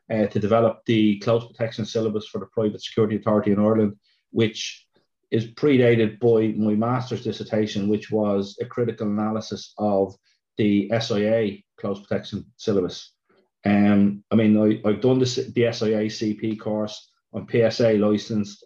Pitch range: 105-115 Hz